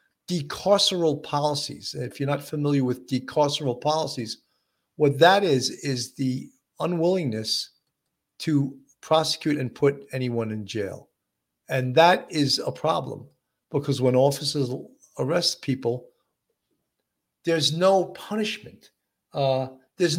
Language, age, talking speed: English, 50-69, 110 wpm